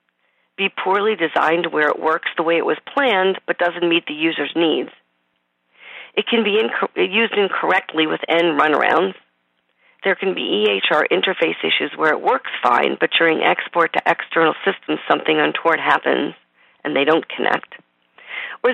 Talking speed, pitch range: 160 wpm, 150-225 Hz